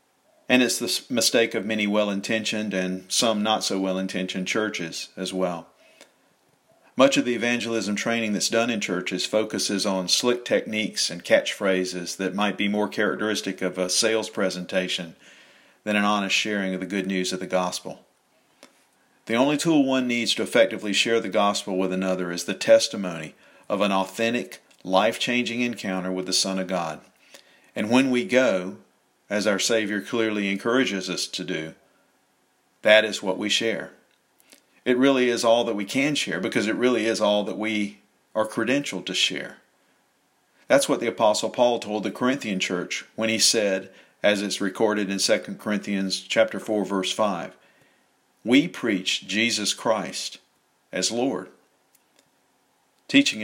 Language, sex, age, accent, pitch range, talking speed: English, male, 50-69, American, 95-115 Hz, 155 wpm